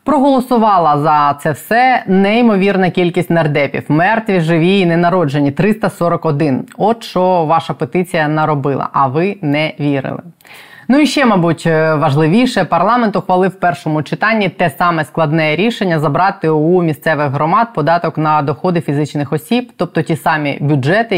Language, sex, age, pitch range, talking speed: Ukrainian, female, 20-39, 150-185 Hz, 140 wpm